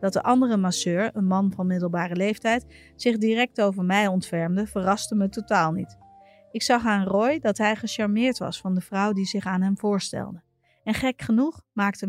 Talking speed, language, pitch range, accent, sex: 190 wpm, Dutch, 180-225 Hz, Dutch, female